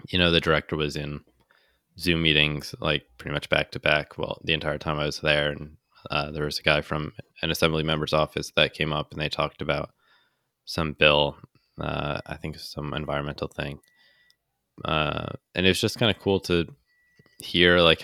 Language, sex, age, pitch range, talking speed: English, male, 20-39, 75-85 Hz, 190 wpm